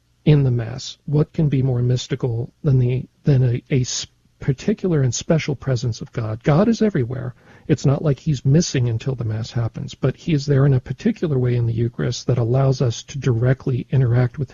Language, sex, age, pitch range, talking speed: English, male, 50-69, 120-145 Hz, 200 wpm